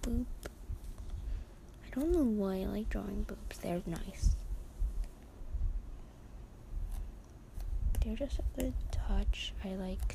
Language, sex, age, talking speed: English, female, 20-39, 105 wpm